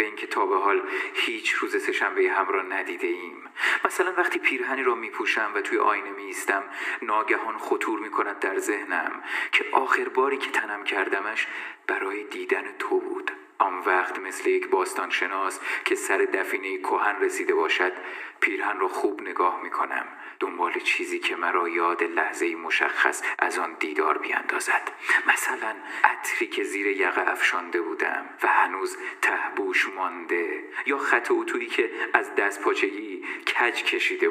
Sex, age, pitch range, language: male, 40-59, 370-405 Hz, Persian